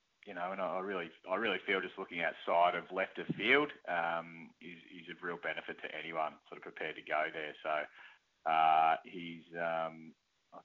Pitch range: 85-100 Hz